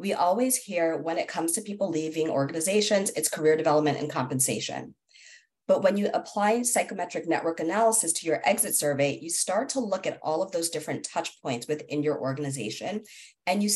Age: 40-59